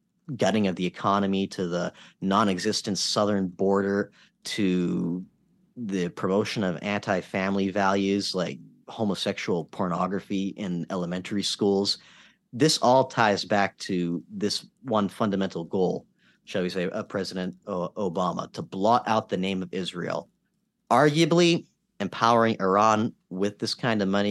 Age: 40-59